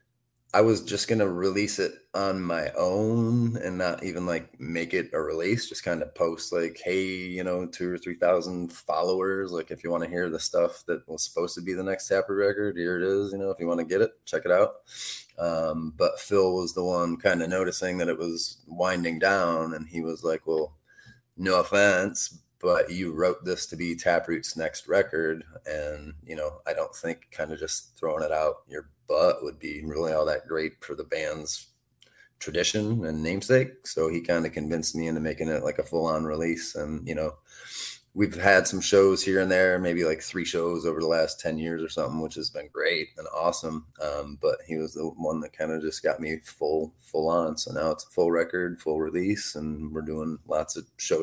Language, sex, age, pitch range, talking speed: English, male, 20-39, 80-100 Hz, 215 wpm